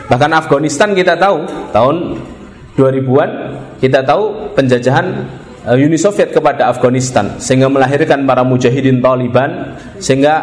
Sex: male